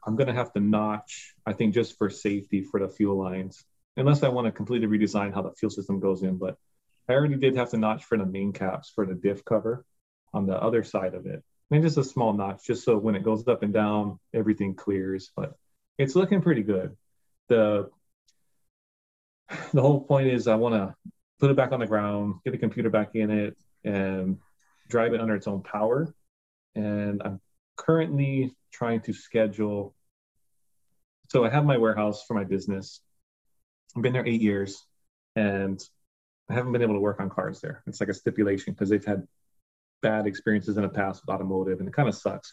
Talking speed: 205 wpm